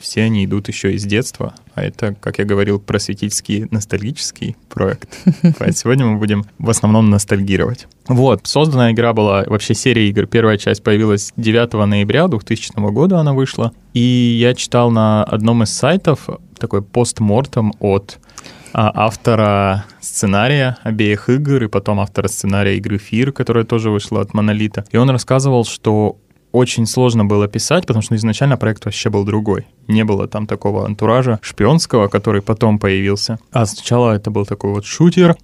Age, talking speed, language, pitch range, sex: 20-39, 155 wpm, Russian, 105-125 Hz, male